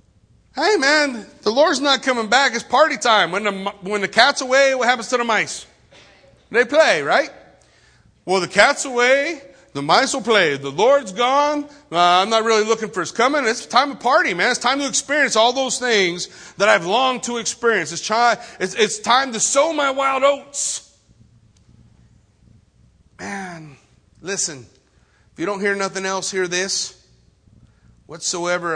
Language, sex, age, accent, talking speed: English, male, 40-59, American, 170 wpm